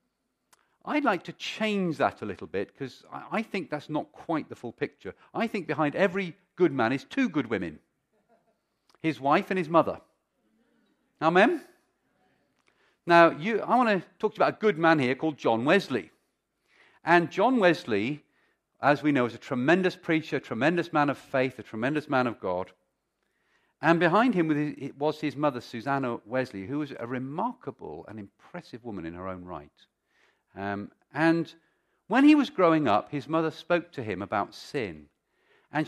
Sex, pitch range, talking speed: male, 130-180 Hz, 180 wpm